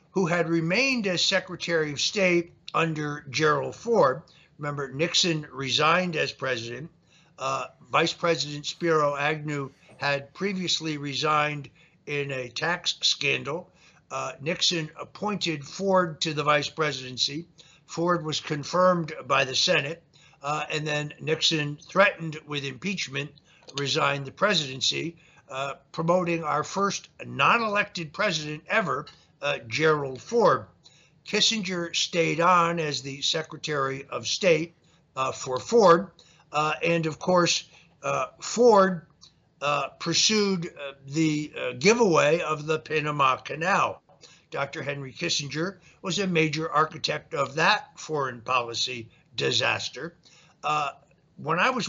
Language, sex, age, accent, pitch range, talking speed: English, male, 60-79, American, 145-175 Hz, 120 wpm